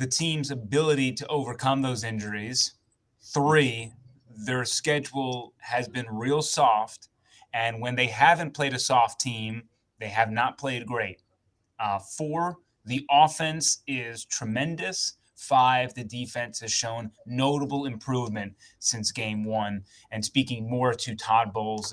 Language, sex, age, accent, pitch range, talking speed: English, male, 30-49, American, 105-125 Hz, 135 wpm